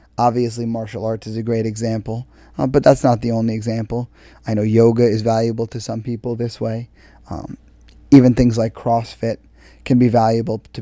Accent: American